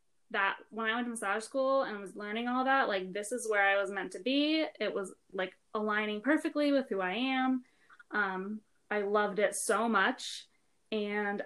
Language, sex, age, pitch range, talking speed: English, female, 20-39, 205-240 Hz, 195 wpm